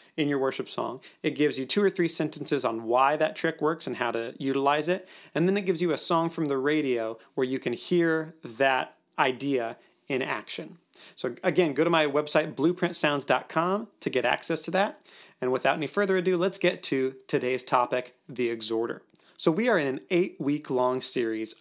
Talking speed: 195 wpm